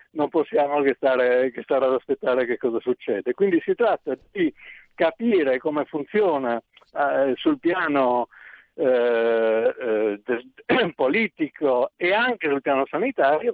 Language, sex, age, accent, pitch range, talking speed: Italian, male, 60-79, native, 135-205 Hz, 130 wpm